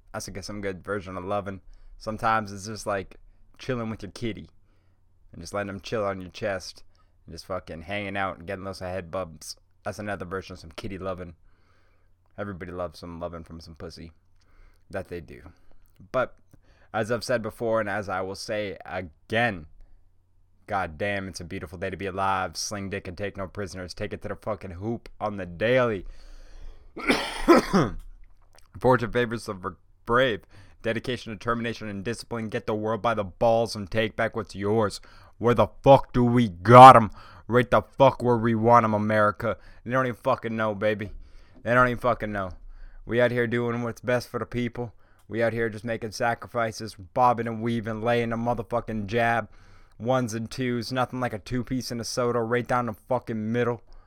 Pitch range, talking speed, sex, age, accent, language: 90-115 Hz, 190 wpm, male, 20-39, American, English